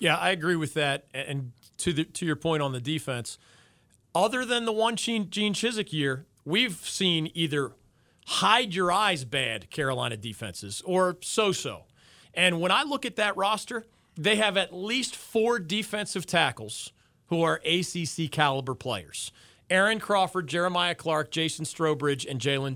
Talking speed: 145 wpm